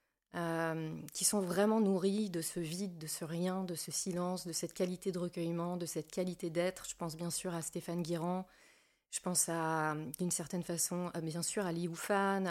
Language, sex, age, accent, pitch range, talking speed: French, female, 20-39, French, 170-190 Hz, 195 wpm